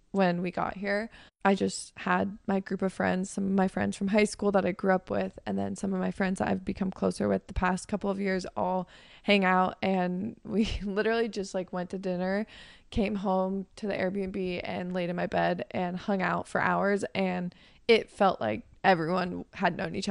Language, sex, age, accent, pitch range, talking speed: English, female, 20-39, American, 180-205 Hz, 220 wpm